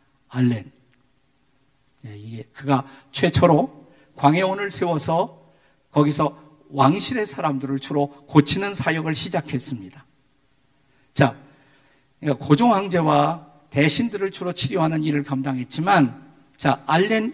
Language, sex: Korean, male